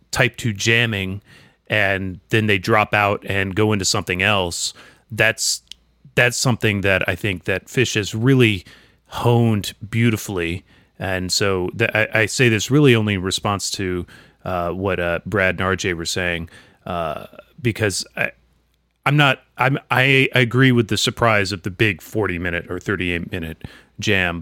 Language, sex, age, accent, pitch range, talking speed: English, male, 30-49, American, 95-120 Hz, 155 wpm